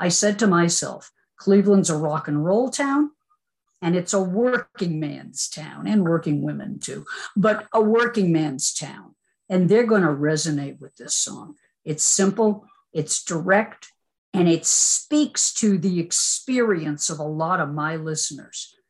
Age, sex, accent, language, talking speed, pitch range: 50-69, female, American, English, 155 wpm, 180-250 Hz